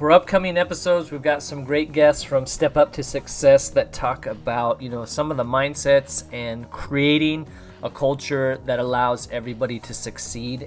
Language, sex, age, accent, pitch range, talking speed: English, male, 30-49, American, 115-140 Hz, 175 wpm